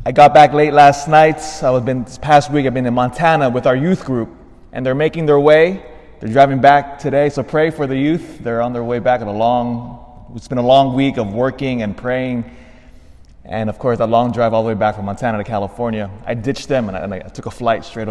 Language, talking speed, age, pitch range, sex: English, 250 wpm, 20-39, 100-140 Hz, male